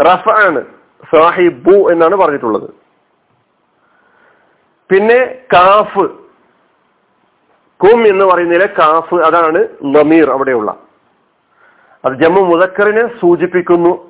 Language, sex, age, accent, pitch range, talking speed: Malayalam, male, 40-59, native, 170-230 Hz, 75 wpm